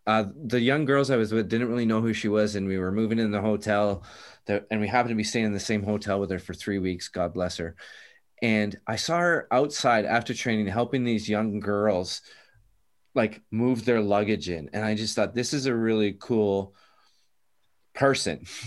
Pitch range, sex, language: 100-125 Hz, male, English